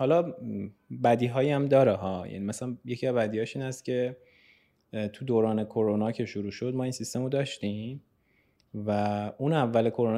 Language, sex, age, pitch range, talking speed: Persian, male, 20-39, 105-140 Hz, 170 wpm